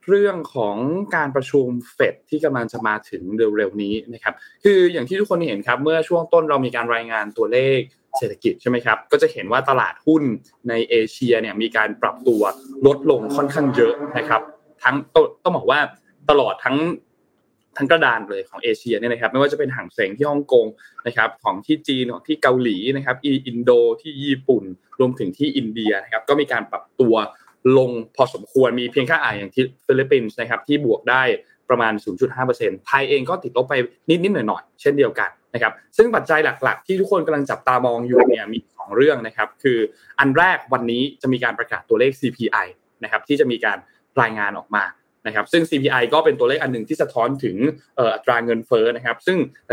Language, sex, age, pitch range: Thai, male, 20-39, 120-200 Hz